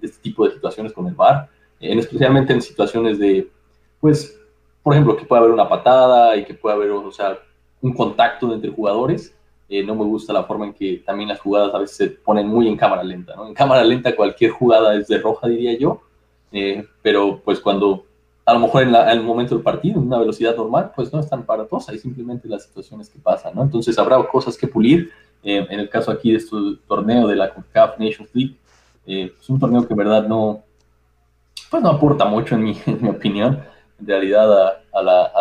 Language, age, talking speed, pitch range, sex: Spanish, 20-39, 225 wpm, 95-115 Hz, male